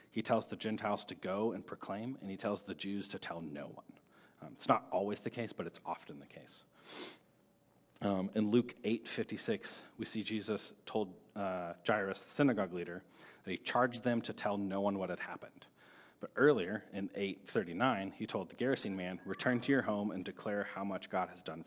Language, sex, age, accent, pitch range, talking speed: English, male, 40-59, American, 90-110 Hz, 200 wpm